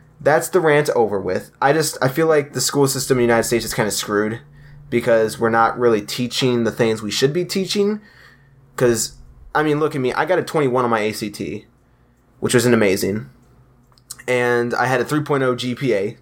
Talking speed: 205 wpm